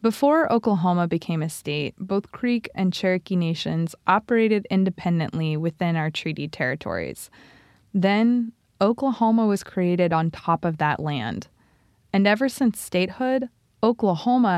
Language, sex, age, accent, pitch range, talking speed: English, female, 20-39, American, 165-225 Hz, 125 wpm